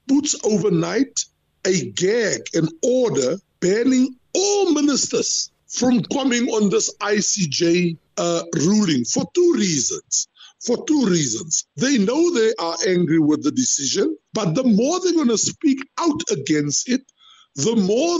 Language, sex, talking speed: English, male, 140 wpm